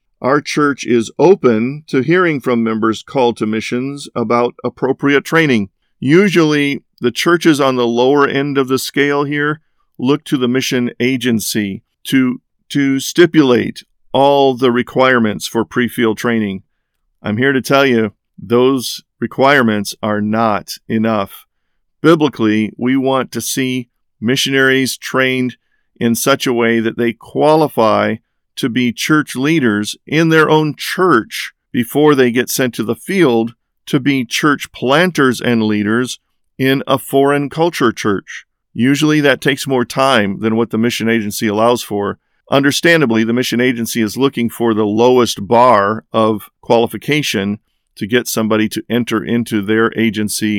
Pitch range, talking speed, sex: 110-140 Hz, 145 wpm, male